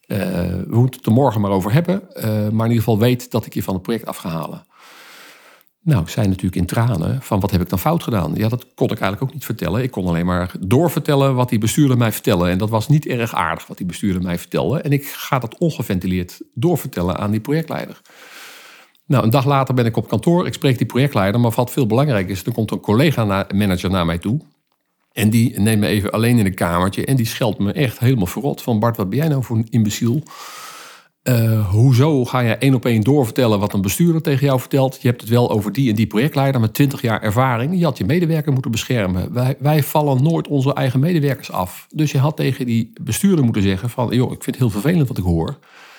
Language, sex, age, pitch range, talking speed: Dutch, male, 50-69, 105-140 Hz, 240 wpm